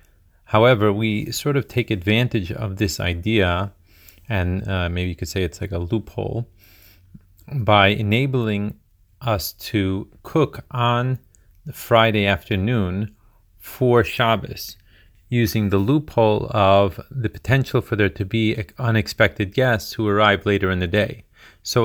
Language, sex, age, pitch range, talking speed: Hebrew, male, 30-49, 95-115 Hz, 135 wpm